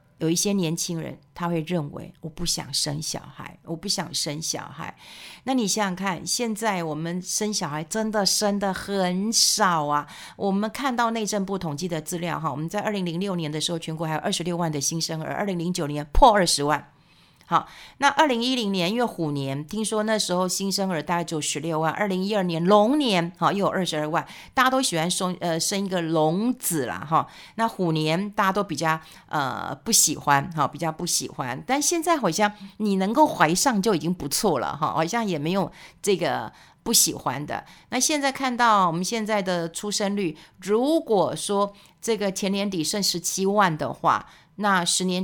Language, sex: Chinese, female